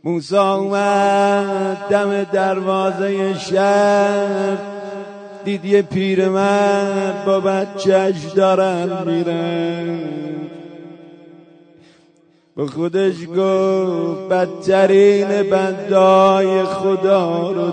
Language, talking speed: Persian, 70 wpm